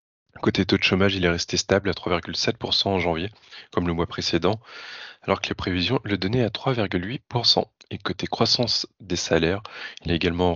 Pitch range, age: 90-105 Hz, 20-39